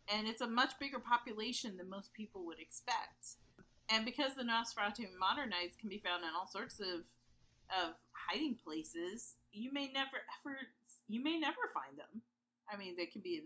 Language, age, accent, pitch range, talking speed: English, 40-59, American, 190-255 Hz, 185 wpm